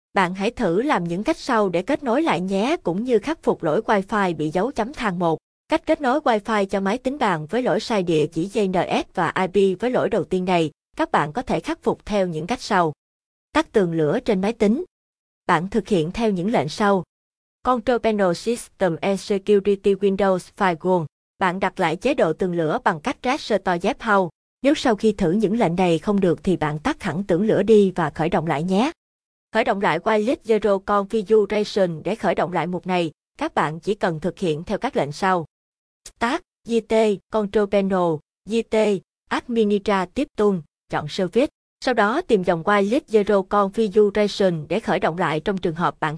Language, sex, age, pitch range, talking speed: Vietnamese, female, 20-39, 175-225 Hz, 200 wpm